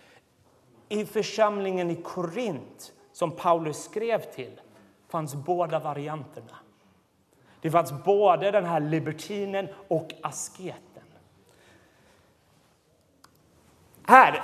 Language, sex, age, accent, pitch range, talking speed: Swedish, male, 30-49, native, 155-200 Hz, 85 wpm